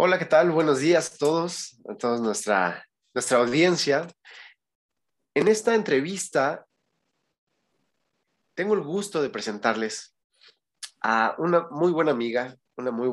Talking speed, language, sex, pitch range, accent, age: 125 wpm, Spanish, male, 105-145 Hz, Mexican, 30-49